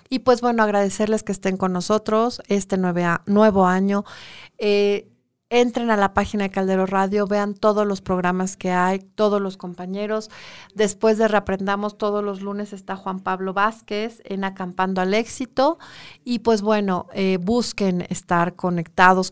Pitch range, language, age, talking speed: 185-215 Hz, Spanish, 40-59, 150 wpm